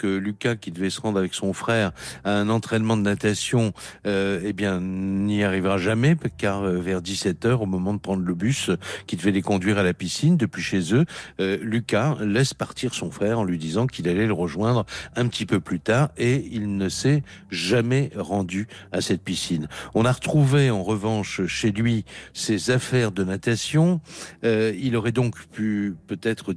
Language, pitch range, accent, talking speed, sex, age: French, 95-120 Hz, French, 185 wpm, male, 60-79